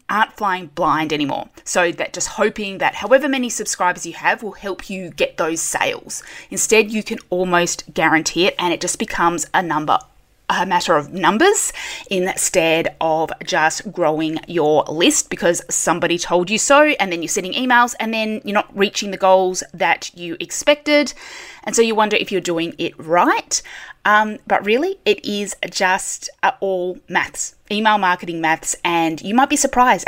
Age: 20-39